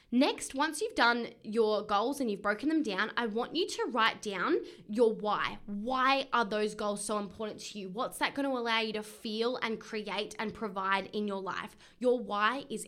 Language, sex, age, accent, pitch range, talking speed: English, female, 10-29, Australian, 210-265 Hz, 210 wpm